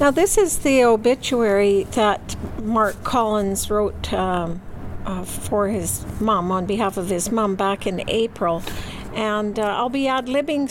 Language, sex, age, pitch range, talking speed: English, female, 60-79, 200-235 Hz, 150 wpm